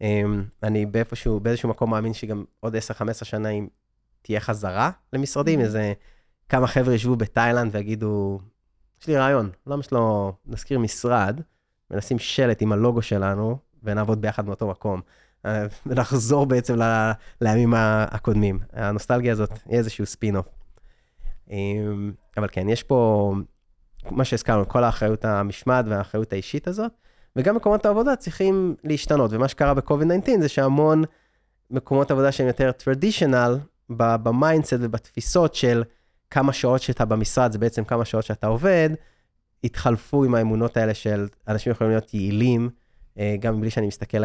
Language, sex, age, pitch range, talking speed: Hebrew, male, 20-39, 105-130 Hz, 140 wpm